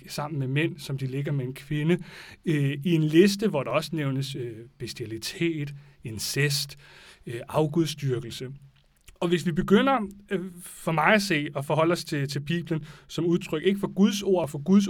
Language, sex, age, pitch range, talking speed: Danish, male, 30-49, 140-175 Hz, 185 wpm